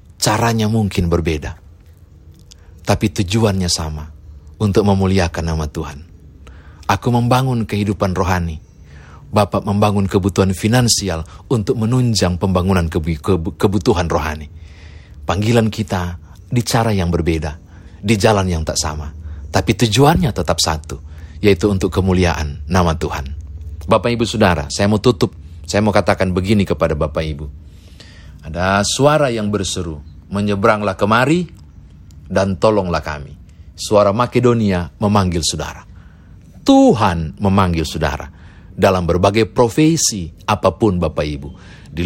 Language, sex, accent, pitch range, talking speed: Indonesian, male, native, 80-105 Hz, 115 wpm